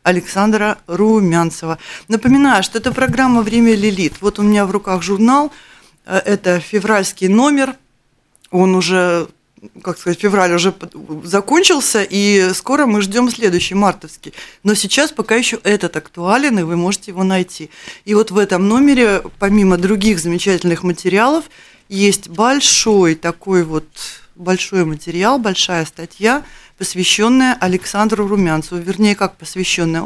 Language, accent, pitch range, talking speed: Russian, native, 175-220 Hz, 130 wpm